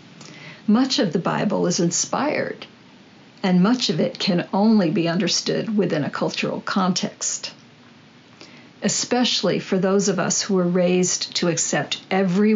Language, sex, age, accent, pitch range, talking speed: English, female, 60-79, American, 185-220 Hz, 140 wpm